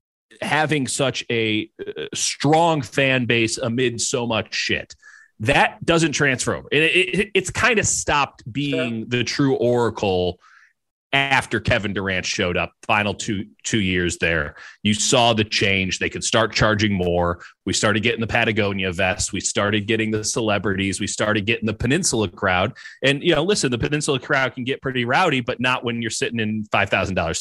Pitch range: 100-130 Hz